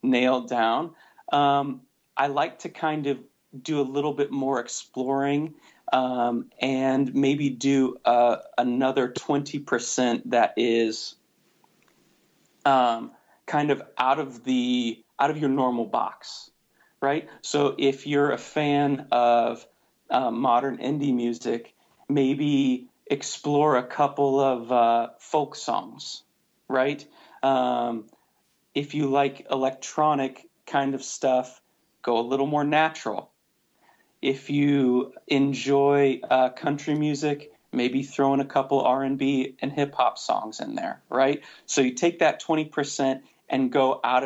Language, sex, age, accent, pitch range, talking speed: English, male, 40-59, American, 125-140 Hz, 125 wpm